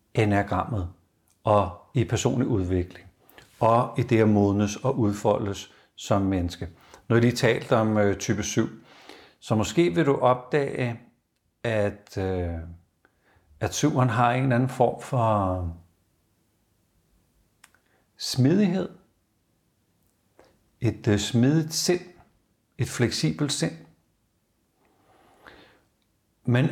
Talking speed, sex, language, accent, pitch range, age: 100 wpm, male, Danish, native, 100-135 Hz, 60-79